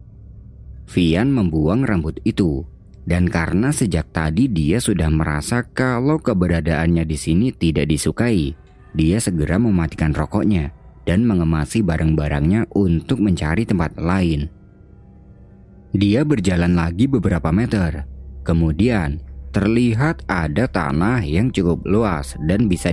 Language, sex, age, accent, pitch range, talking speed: Indonesian, male, 30-49, native, 75-100 Hz, 110 wpm